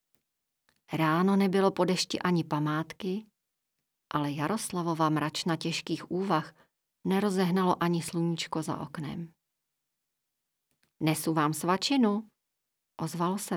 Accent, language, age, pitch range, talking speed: native, Czech, 40-59, 160-205 Hz, 95 wpm